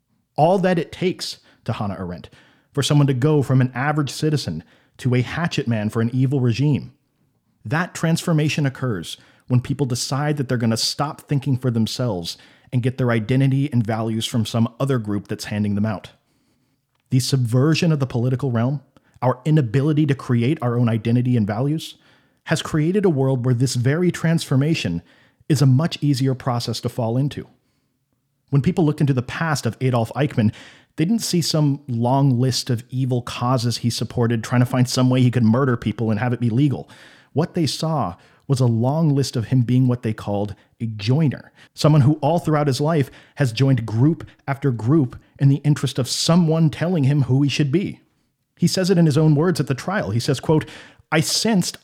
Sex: male